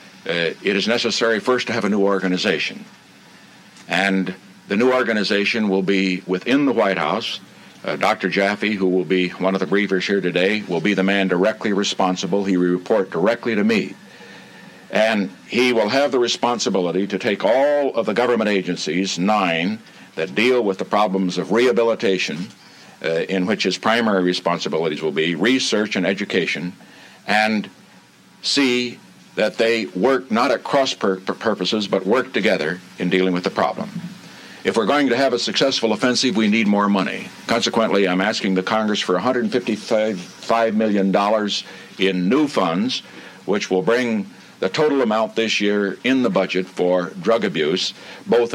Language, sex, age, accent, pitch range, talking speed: English, male, 60-79, American, 95-115 Hz, 160 wpm